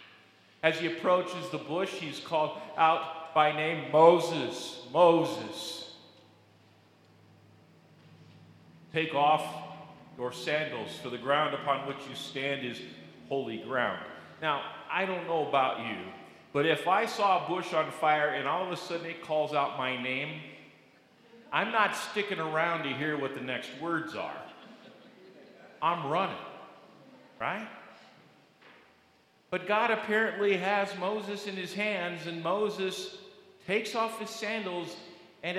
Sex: male